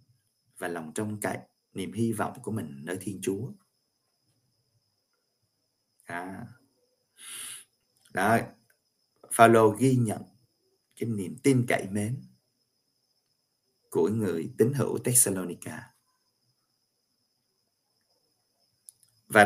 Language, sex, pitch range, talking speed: Vietnamese, male, 110-140 Hz, 85 wpm